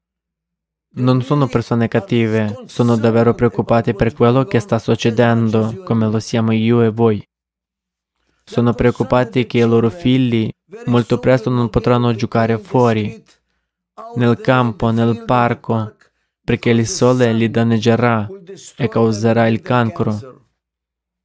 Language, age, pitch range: Italian, 20-39, 115-125 Hz